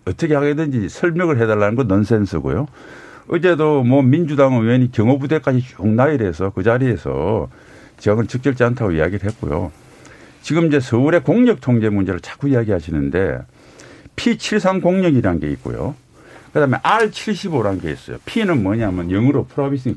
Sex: male